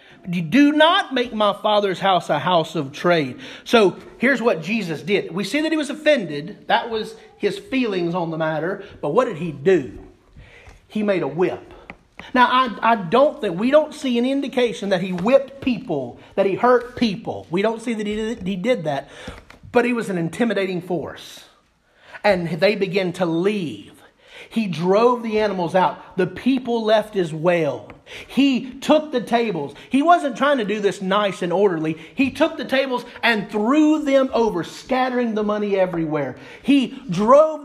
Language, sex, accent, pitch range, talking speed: English, male, American, 195-270 Hz, 180 wpm